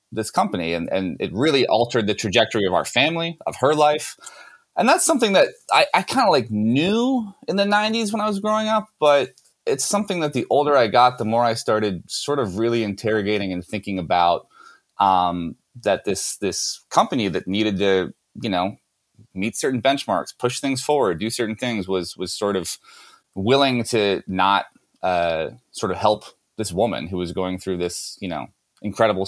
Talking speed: 190 wpm